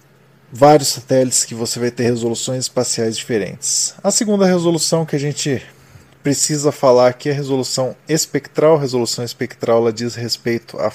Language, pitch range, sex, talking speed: Portuguese, 110-135 Hz, male, 160 wpm